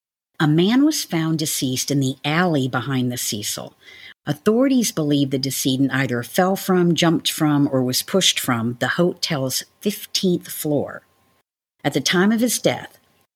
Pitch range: 130-175 Hz